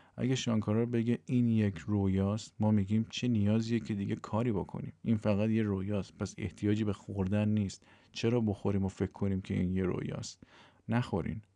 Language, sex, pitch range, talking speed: Persian, male, 100-110 Hz, 170 wpm